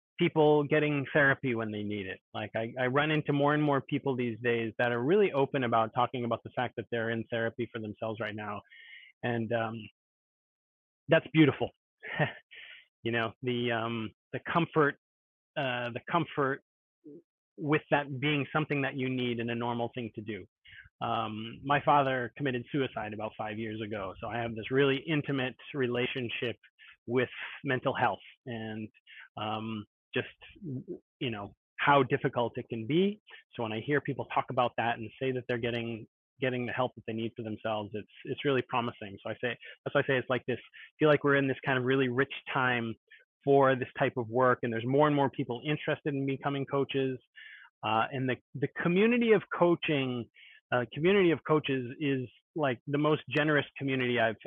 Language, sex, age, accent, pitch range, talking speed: English, male, 30-49, American, 115-140 Hz, 185 wpm